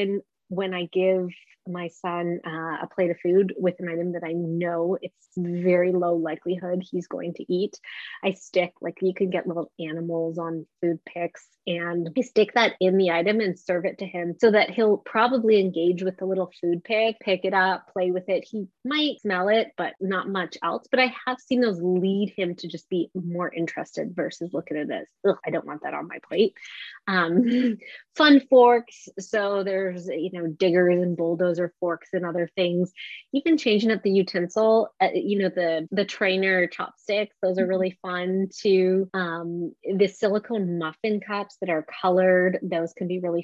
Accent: American